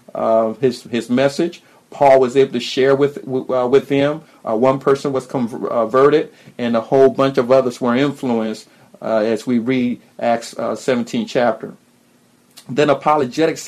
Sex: male